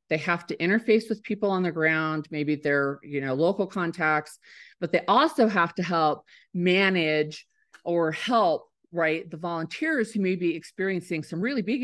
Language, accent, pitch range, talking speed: English, American, 155-205 Hz, 170 wpm